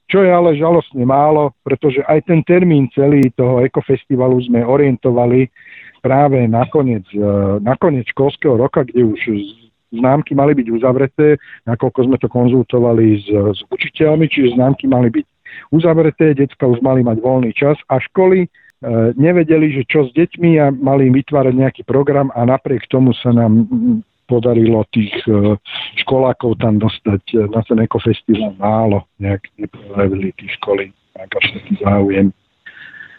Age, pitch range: 50-69, 115-140 Hz